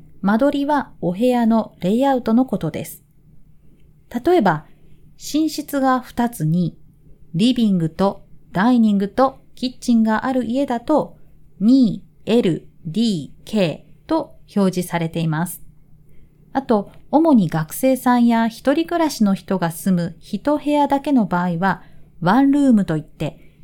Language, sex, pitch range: Japanese, female, 160-250 Hz